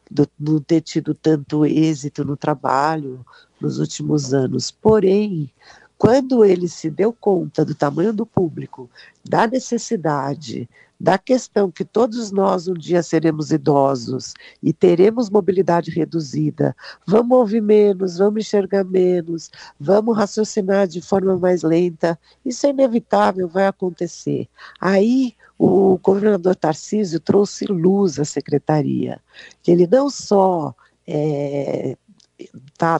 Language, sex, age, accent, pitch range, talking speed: Portuguese, female, 50-69, Brazilian, 155-200 Hz, 120 wpm